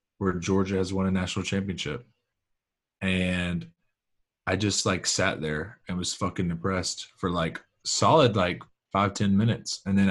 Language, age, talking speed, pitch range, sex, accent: English, 20-39, 155 wpm, 95-120 Hz, male, American